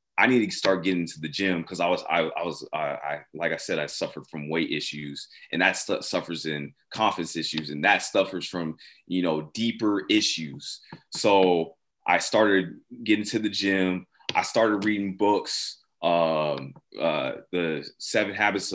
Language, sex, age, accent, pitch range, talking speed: English, male, 20-39, American, 85-105 Hz, 175 wpm